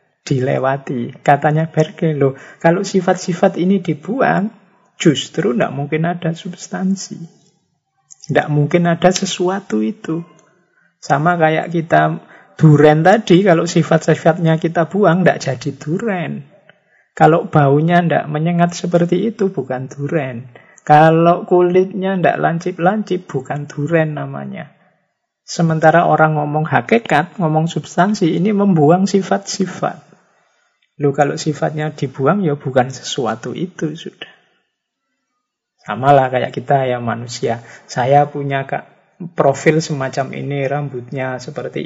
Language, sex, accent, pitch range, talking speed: Indonesian, male, native, 145-185 Hz, 110 wpm